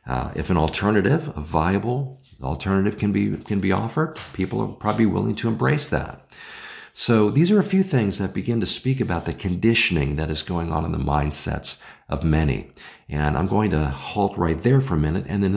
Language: English